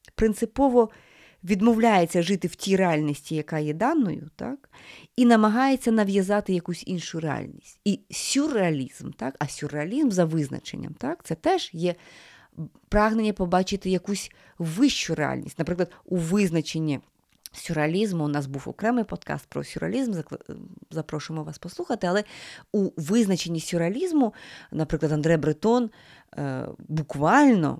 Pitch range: 155-205 Hz